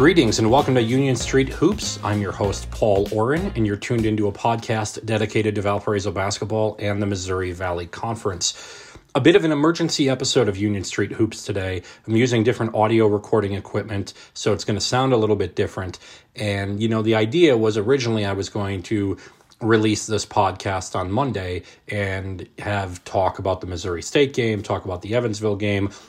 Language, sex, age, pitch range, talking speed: English, male, 30-49, 100-110 Hz, 190 wpm